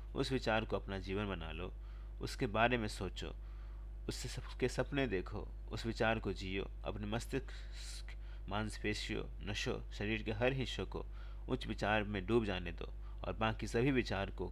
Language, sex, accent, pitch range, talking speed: Hindi, male, native, 95-110 Hz, 160 wpm